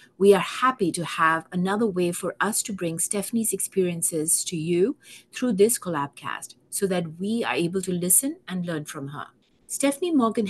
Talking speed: 185 wpm